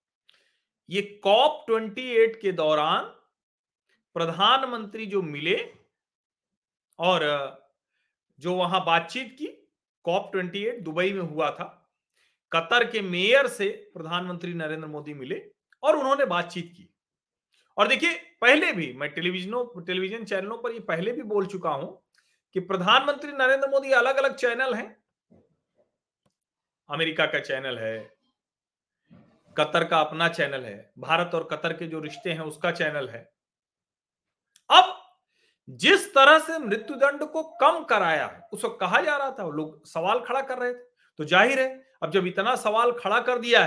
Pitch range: 165-245 Hz